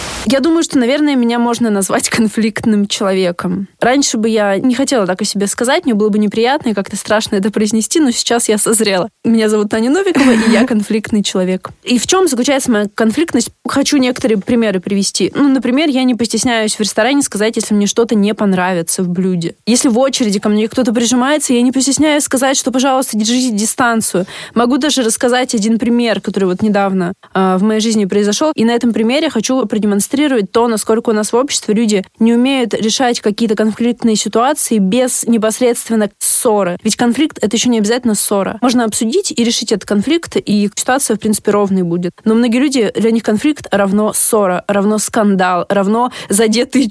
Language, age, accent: Russian, 20-39, native